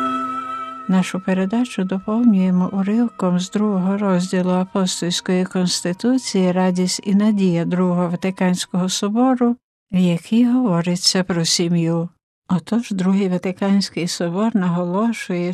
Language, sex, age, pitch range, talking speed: Ukrainian, female, 60-79, 180-225 Hz, 95 wpm